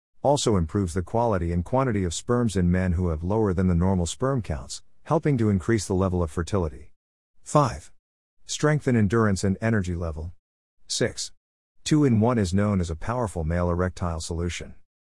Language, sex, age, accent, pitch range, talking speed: English, male, 50-69, American, 85-115 Hz, 165 wpm